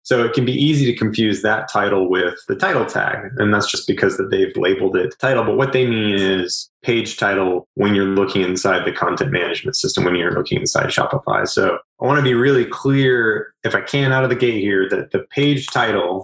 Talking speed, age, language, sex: 225 wpm, 20-39, English, male